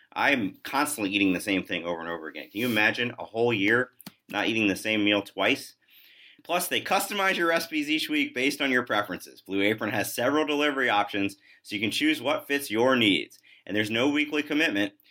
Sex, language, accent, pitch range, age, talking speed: male, English, American, 105-145 Hz, 30-49, 205 wpm